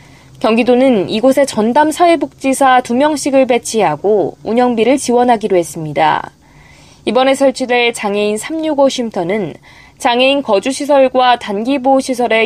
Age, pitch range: 20-39, 205-270 Hz